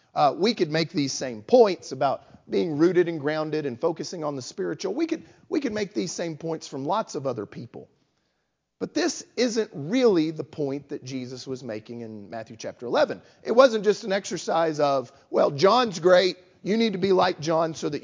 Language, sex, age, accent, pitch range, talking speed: English, male, 40-59, American, 140-210 Hz, 200 wpm